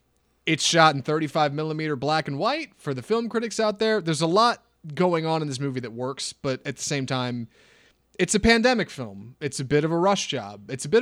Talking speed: 235 wpm